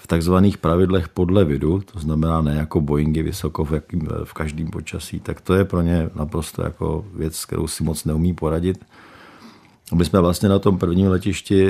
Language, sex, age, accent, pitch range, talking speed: Czech, male, 50-69, native, 80-100 Hz, 175 wpm